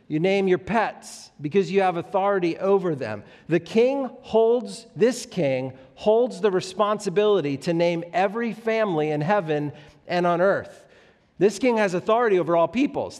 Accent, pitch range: American, 160-210 Hz